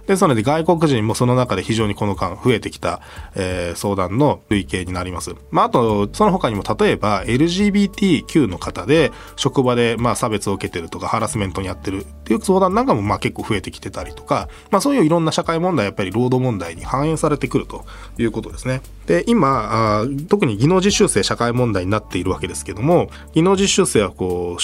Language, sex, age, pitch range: Japanese, male, 20-39, 100-170 Hz